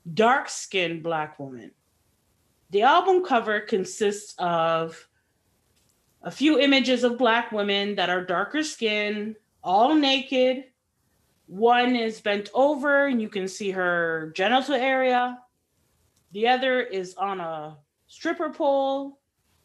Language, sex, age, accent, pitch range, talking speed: English, female, 30-49, American, 190-250 Hz, 115 wpm